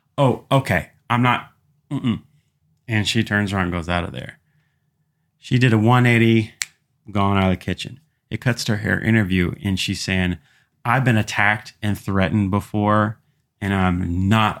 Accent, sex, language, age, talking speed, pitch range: American, male, English, 30-49, 165 wpm, 95-135 Hz